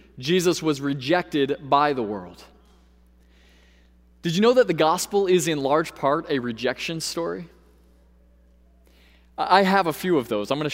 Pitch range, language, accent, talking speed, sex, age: 120-160 Hz, English, American, 155 wpm, male, 20-39